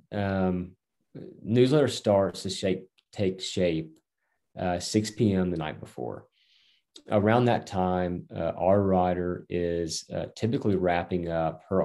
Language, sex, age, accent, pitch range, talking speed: English, male, 30-49, American, 85-100 Hz, 125 wpm